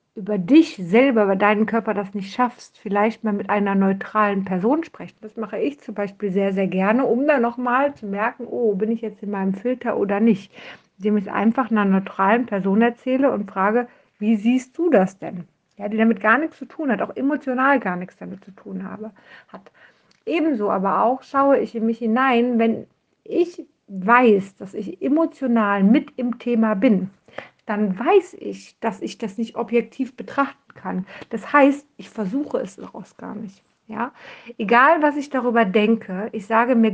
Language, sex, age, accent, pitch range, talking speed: German, female, 60-79, German, 205-245 Hz, 185 wpm